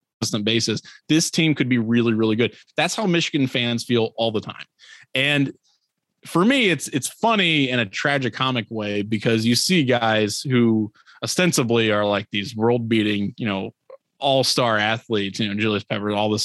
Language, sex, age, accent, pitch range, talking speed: English, male, 20-39, American, 105-135 Hz, 175 wpm